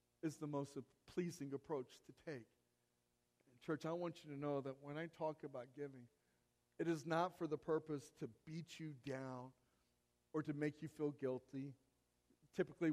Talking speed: 165 wpm